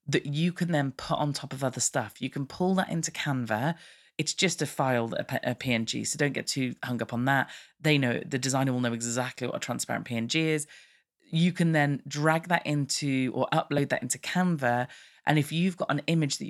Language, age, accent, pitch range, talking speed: English, 30-49, British, 125-160 Hz, 220 wpm